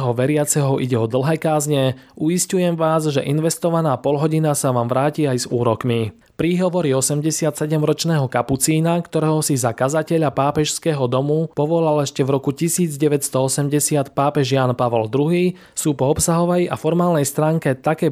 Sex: male